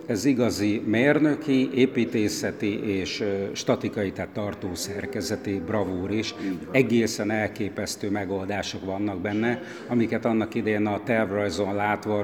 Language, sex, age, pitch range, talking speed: Hungarian, male, 60-79, 100-120 Hz, 110 wpm